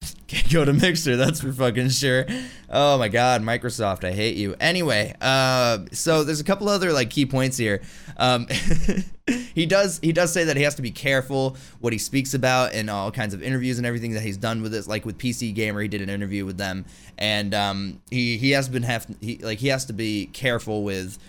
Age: 20-39